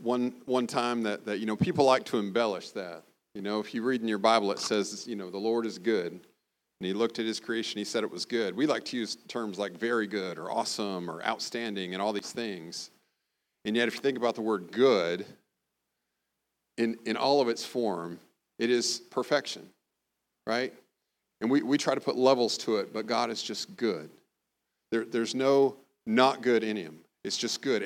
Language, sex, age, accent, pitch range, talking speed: English, male, 40-59, American, 105-130 Hz, 210 wpm